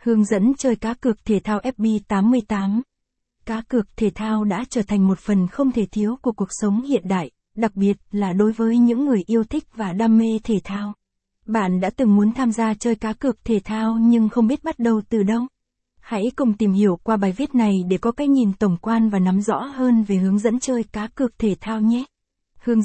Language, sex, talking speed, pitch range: Vietnamese, female, 225 wpm, 205-235 Hz